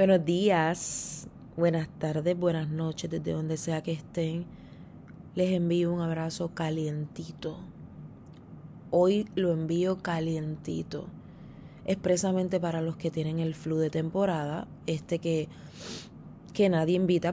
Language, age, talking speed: Spanish, 20-39, 120 wpm